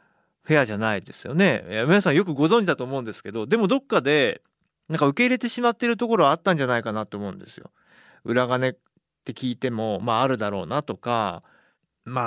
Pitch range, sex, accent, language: 110-150 Hz, male, native, Japanese